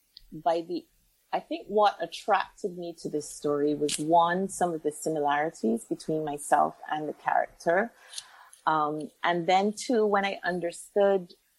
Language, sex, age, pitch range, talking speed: English, female, 30-49, 155-185 Hz, 145 wpm